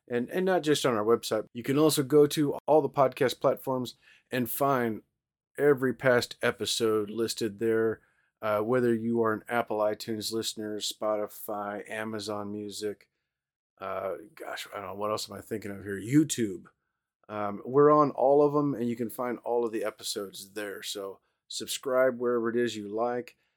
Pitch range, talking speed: 110-135 Hz, 175 wpm